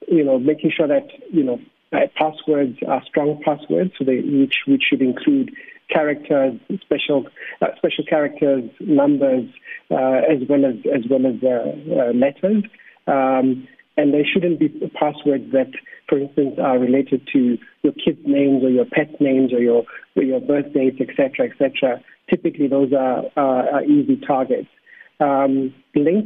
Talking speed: 165 wpm